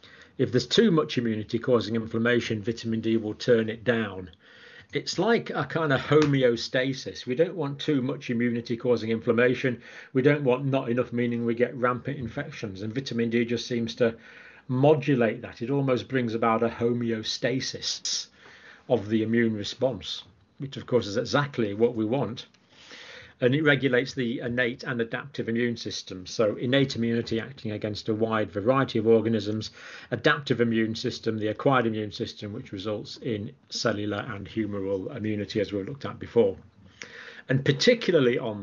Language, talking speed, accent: English, 160 wpm, British